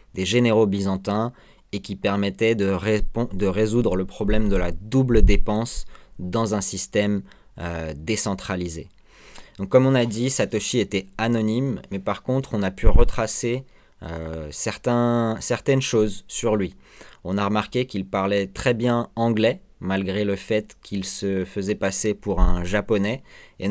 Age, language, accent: 20-39, French, French